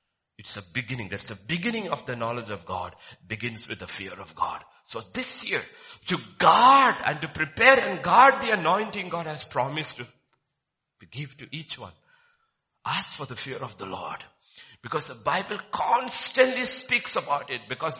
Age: 60-79